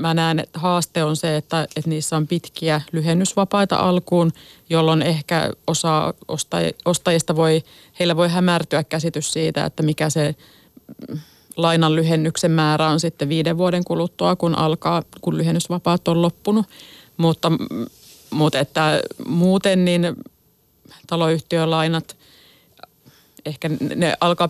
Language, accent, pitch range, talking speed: Finnish, native, 160-175 Hz, 115 wpm